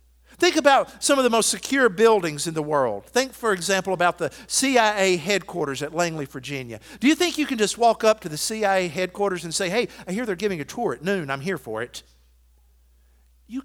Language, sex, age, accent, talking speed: English, male, 50-69, American, 215 wpm